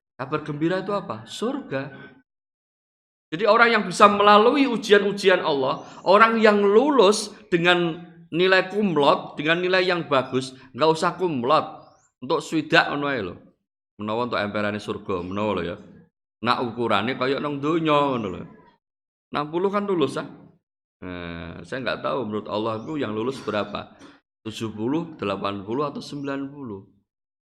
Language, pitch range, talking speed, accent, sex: Indonesian, 105-170 Hz, 115 wpm, native, male